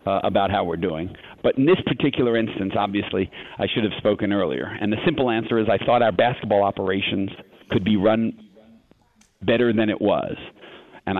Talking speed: 180 wpm